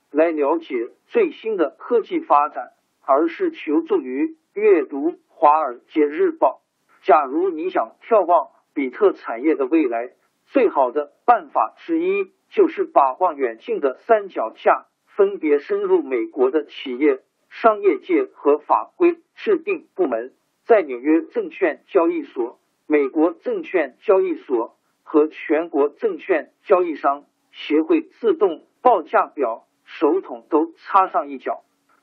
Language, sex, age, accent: Chinese, male, 50-69, native